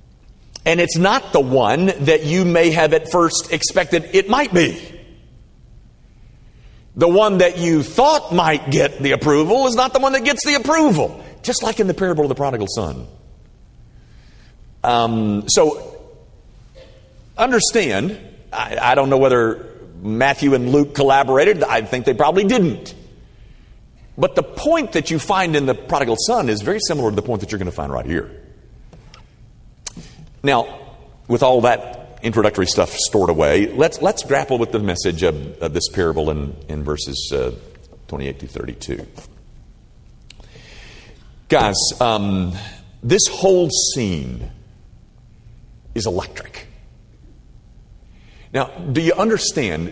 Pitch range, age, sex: 110-185 Hz, 50-69, male